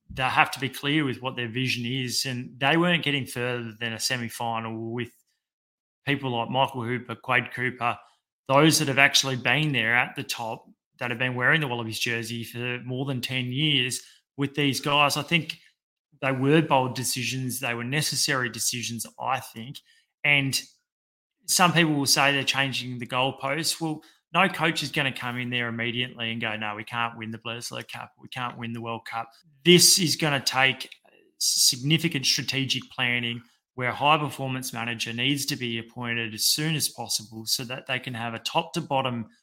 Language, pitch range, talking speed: English, 120-145 Hz, 185 wpm